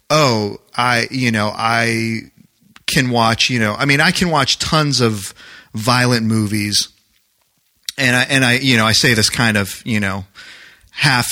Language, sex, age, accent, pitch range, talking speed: English, male, 30-49, American, 110-140 Hz, 170 wpm